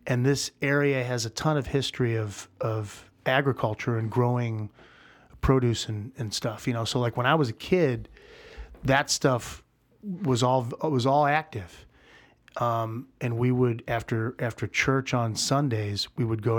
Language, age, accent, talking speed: English, 30-49, American, 165 wpm